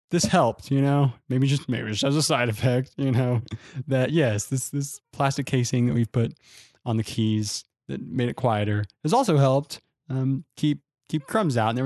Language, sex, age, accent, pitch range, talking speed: English, male, 20-39, American, 115-150 Hz, 200 wpm